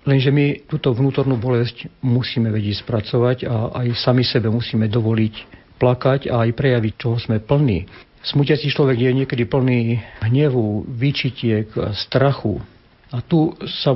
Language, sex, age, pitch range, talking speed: Slovak, male, 50-69, 115-135 Hz, 140 wpm